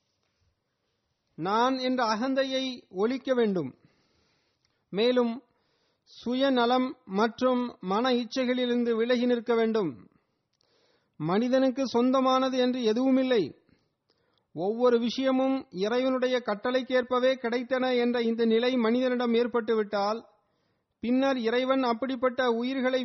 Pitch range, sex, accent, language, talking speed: 210-255 Hz, male, native, Tamil, 80 wpm